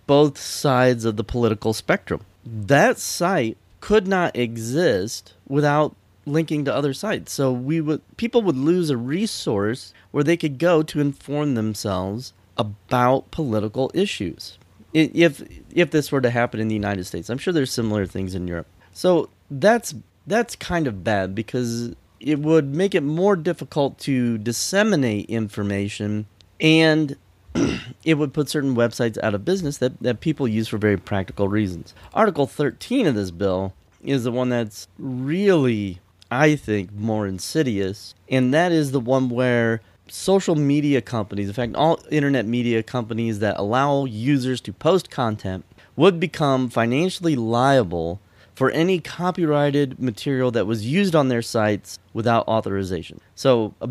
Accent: American